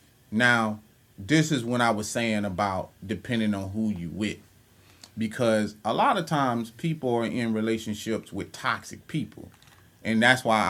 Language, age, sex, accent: English, 30-49, male, American